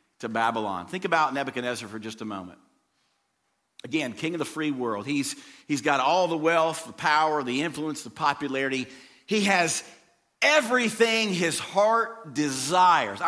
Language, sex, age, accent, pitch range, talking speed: English, male, 50-69, American, 130-220 Hz, 145 wpm